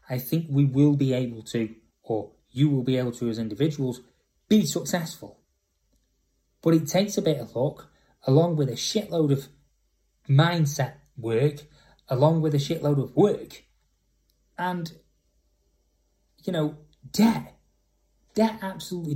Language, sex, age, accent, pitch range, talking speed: English, male, 20-39, British, 125-155 Hz, 135 wpm